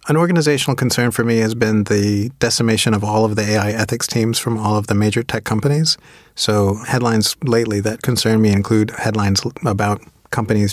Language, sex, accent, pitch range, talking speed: English, male, American, 110-125 Hz, 185 wpm